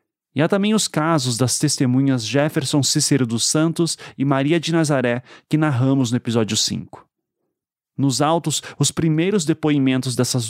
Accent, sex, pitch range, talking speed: Brazilian, male, 125-165 Hz, 150 wpm